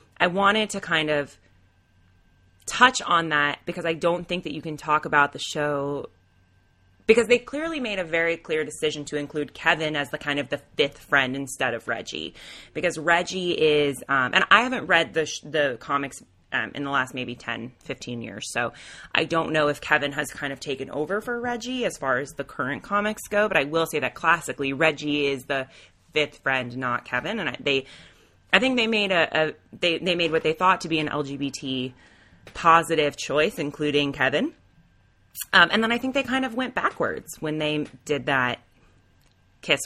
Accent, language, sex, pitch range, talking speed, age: American, English, female, 125-165 Hz, 195 wpm, 20-39